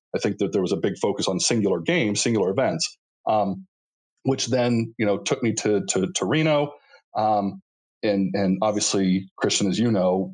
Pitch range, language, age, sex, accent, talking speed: 95-110 Hz, English, 30-49, male, American, 185 wpm